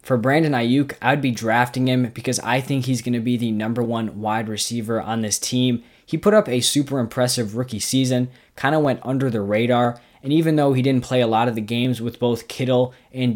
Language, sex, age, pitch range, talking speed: English, male, 20-39, 115-130 Hz, 225 wpm